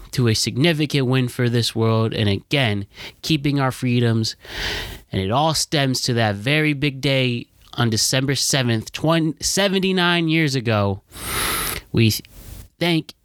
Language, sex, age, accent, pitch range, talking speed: English, male, 20-39, American, 105-140 Hz, 135 wpm